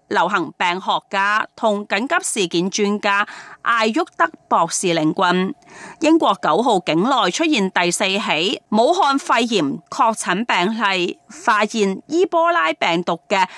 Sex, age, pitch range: female, 30-49, 185-285 Hz